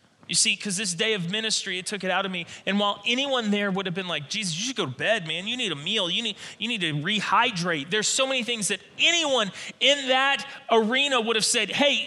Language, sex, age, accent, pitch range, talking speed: English, male, 30-49, American, 185-240 Hz, 255 wpm